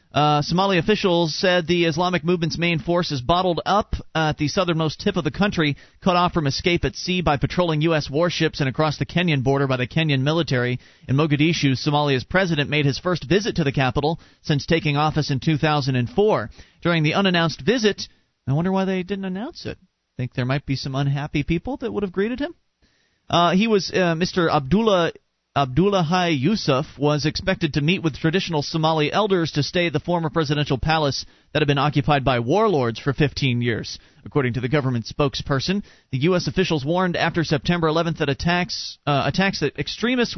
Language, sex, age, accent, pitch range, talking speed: English, male, 40-59, American, 140-180 Hz, 190 wpm